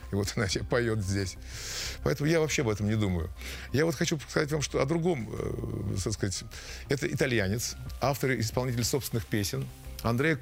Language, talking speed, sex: Russian, 175 wpm, male